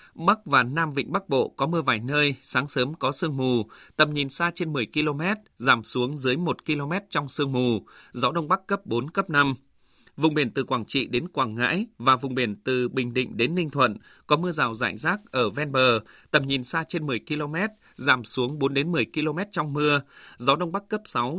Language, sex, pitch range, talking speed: Vietnamese, male, 130-170 Hz, 225 wpm